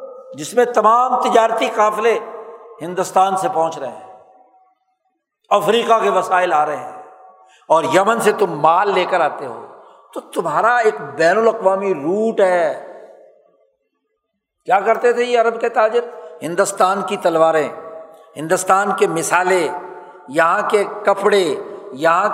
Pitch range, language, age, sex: 195-255 Hz, Urdu, 60-79, male